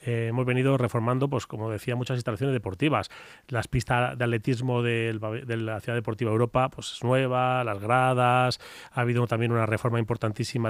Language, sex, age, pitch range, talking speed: Spanish, male, 30-49, 120-140 Hz, 175 wpm